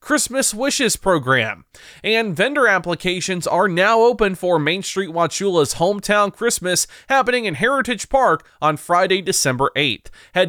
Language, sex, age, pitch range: English, male, 30-49, 155-205 Hz